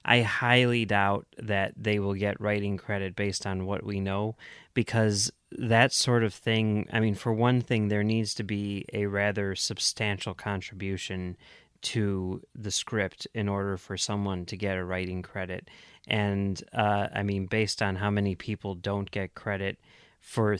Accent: American